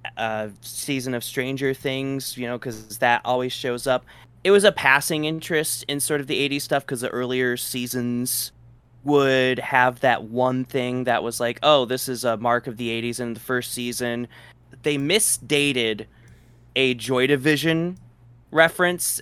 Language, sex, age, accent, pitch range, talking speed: English, male, 20-39, American, 120-140 Hz, 165 wpm